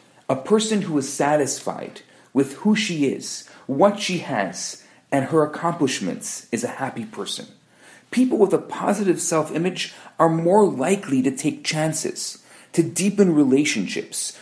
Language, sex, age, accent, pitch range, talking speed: English, male, 40-59, Canadian, 135-190 Hz, 135 wpm